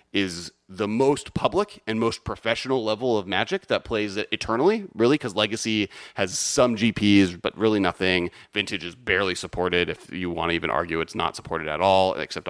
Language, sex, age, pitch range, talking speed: English, male, 30-49, 95-115 Hz, 185 wpm